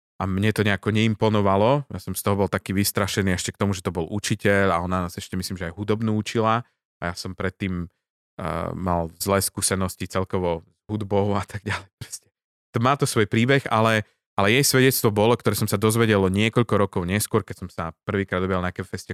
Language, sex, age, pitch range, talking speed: Slovak, male, 20-39, 95-110 Hz, 200 wpm